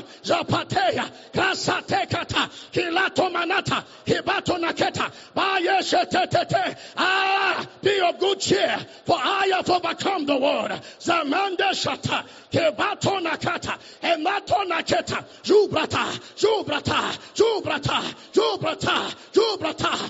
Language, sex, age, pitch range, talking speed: English, male, 40-59, 325-370 Hz, 85 wpm